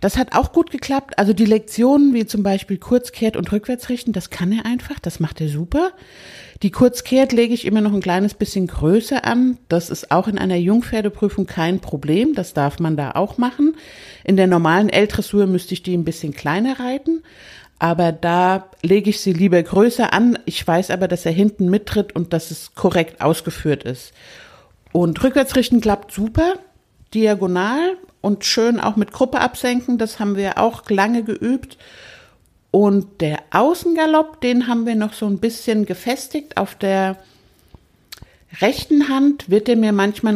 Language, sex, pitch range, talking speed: German, female, 185-245 Hz, 170 wpm